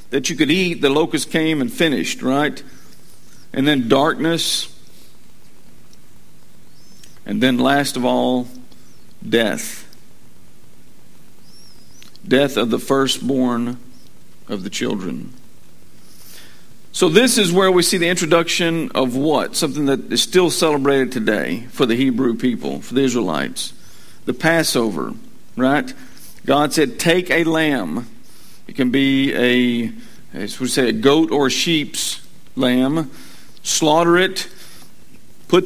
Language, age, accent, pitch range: English, 50-69, American, 130-170 Hz